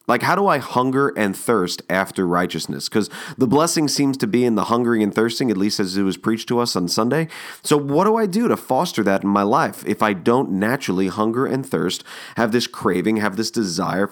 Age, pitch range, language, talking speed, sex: 30-49, 95-125 Hz, English, 230 wpm, male